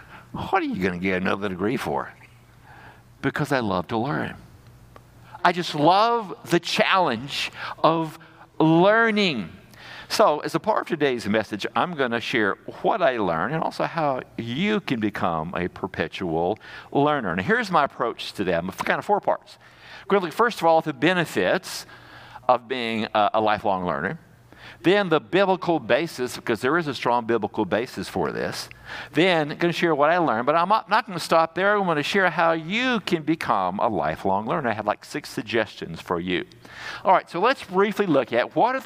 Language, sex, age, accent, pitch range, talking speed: English, male, 60-79, American, 120-190 Hz, 185 wpm